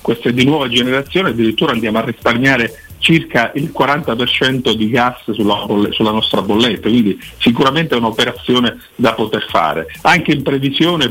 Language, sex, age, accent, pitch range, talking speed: Italian, male, 50-69, native, 120-165 Hz, 150 wpm